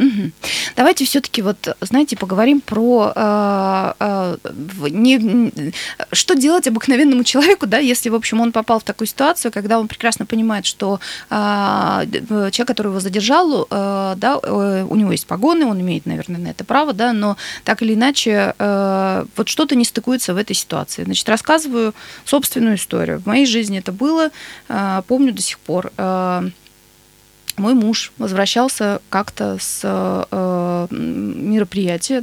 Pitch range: 190-250 Hz